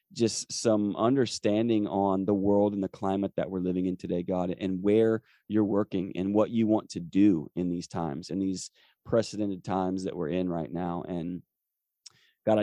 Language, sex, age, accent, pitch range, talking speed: English, male, 30-49, American, 95-105 Hz, 185 wpm